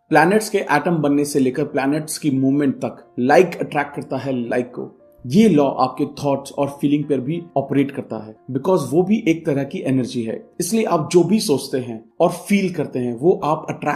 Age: 30-49